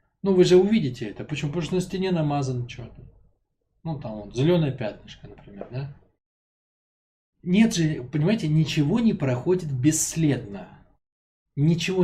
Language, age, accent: Russian, 20-39, native